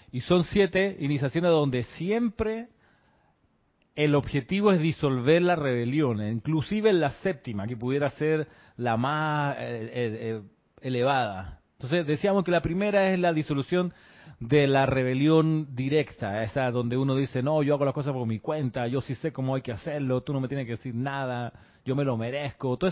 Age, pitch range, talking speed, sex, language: 40-59, 130-165 Hz, 175 wpm, male, Spanish